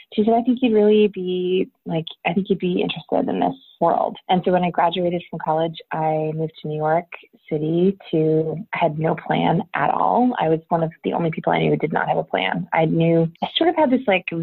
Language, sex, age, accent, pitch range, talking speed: English, female, 20-39, American, 160-190 Hz, 245 wpm